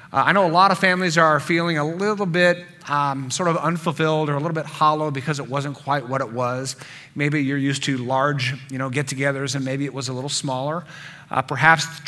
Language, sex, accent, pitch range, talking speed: English, male, American, 130-160 Hz, 225 wpm